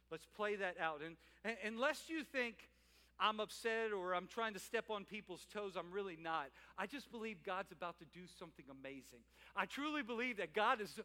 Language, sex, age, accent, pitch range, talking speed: English, male, 50-69, American, 180-265 Hz, 195 wpm